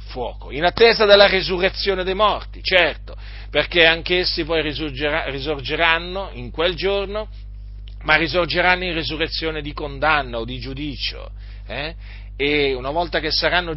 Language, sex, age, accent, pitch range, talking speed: Italian, male, 50-69, native, 110-175 Hz, 135 wpm